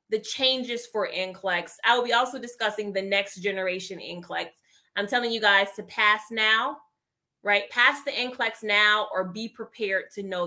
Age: 20-39